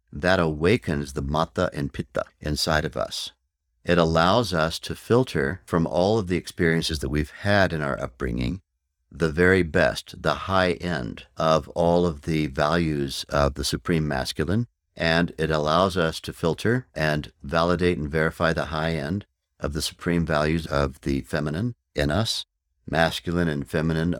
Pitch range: 75-90 Hz